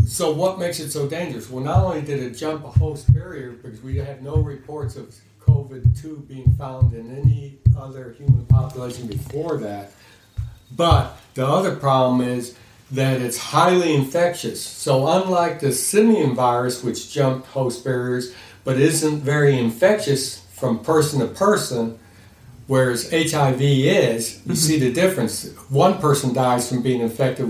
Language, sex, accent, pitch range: English, male, American, 115-150 Hz